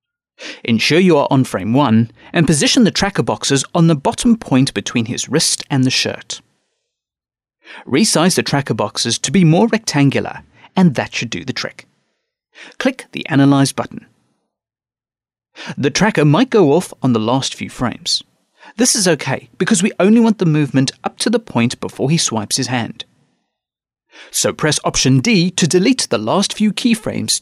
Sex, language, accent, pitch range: male, English, British, 125-200 Hz